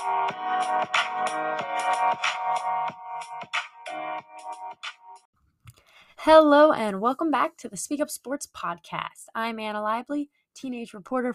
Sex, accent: female, American